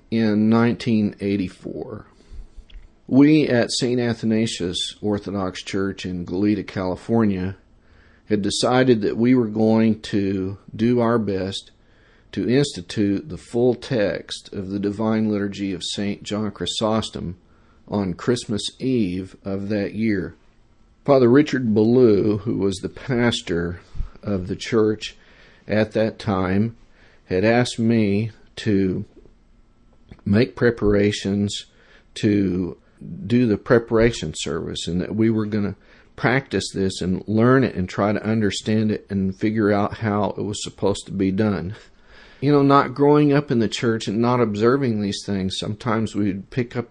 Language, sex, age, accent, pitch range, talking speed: English, male, 50-69, American, 100-115 Hz, 135 wpm